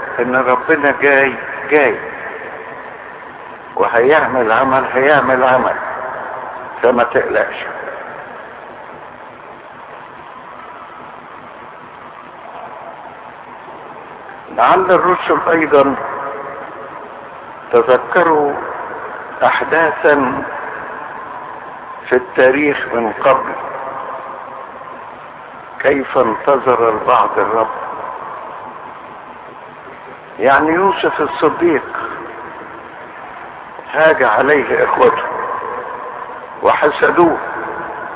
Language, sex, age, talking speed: Arabic, male, 60-79, 45 wpm